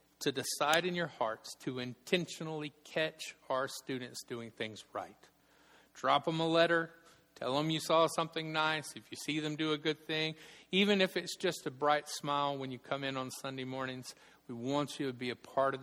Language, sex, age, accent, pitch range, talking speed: English, male, 50-69, American, 135-175 Hz, 200 wpm